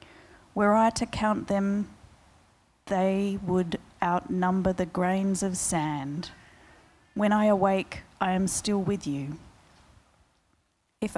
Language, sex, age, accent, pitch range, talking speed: English, female, 30-49, Australian, 175-210 Hz, 115 wpm